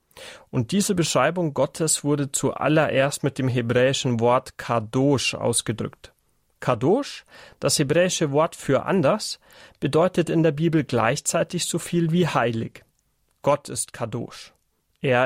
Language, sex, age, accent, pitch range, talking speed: German, male, 30-49, German, 125-165 Hz, 120 wpm